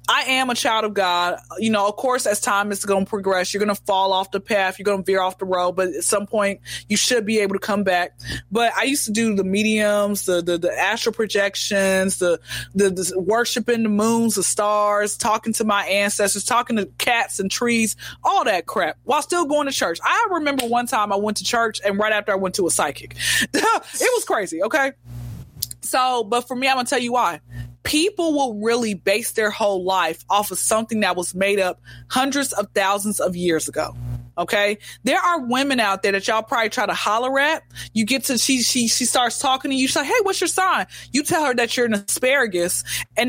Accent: American